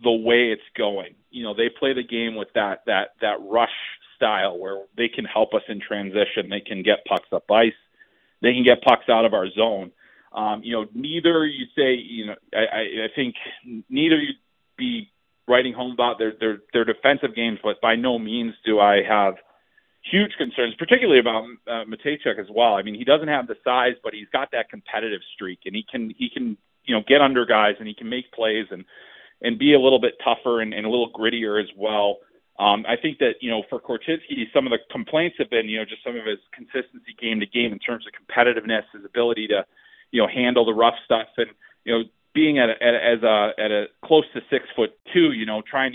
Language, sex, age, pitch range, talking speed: English, male, 40-59, 110-140 Hz, 225 wpm